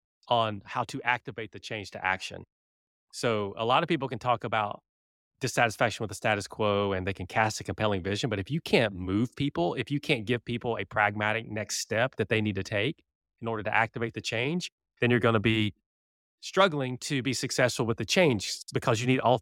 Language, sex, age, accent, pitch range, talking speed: English, male, 30-49, American, 105-130 Hz, 215 wpm